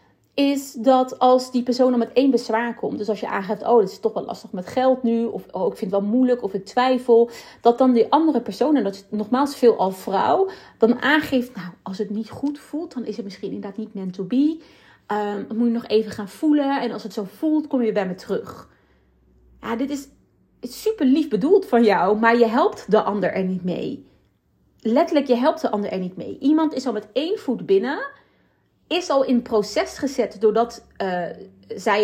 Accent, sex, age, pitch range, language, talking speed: Dutch, female, 30-49, 210-270 Hz, Dutch, 220 wpm